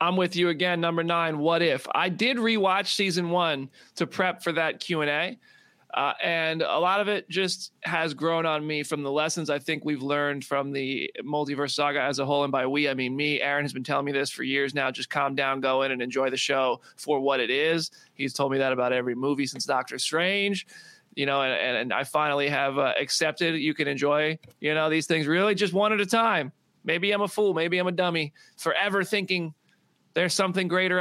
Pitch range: 135-175 Hz